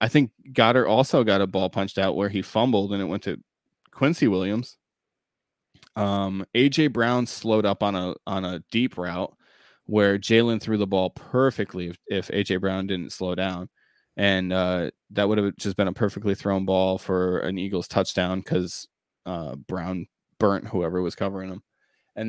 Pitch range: 95-110 Hz